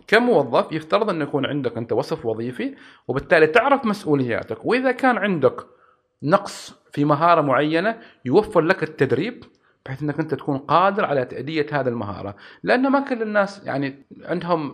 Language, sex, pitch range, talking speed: Arabic, male, 135-205 Hz, 150 wpm